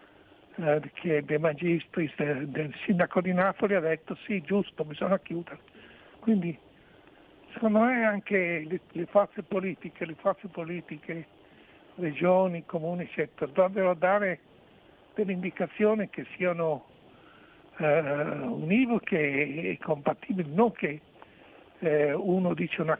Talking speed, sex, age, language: 115 wpm, male, 60-79, Italian